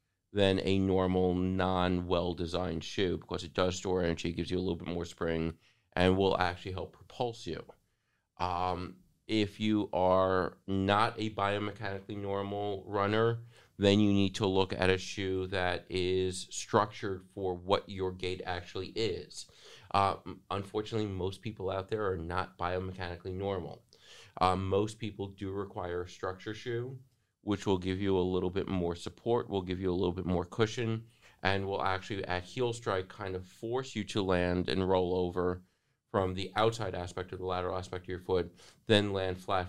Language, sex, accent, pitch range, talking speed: English, male, American, 90-100 Hz, 170 wpm